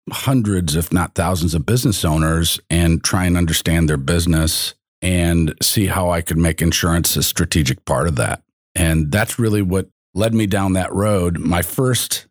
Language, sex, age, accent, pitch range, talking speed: English, male, 50-69, American, 85-95 Hz, 175 wpm